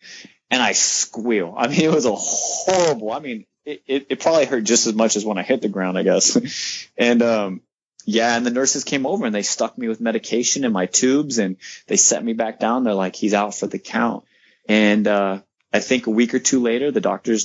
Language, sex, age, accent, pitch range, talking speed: English, male, 20-39, American, 100-125 Hz, 235 wpm